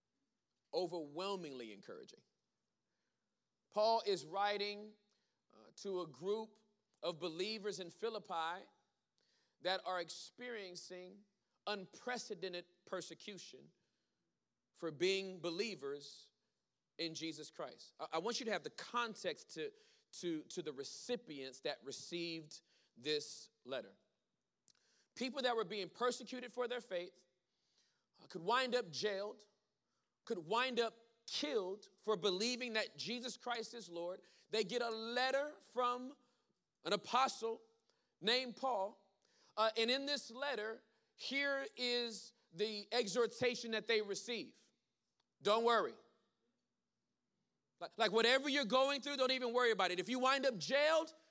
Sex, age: male, 40-59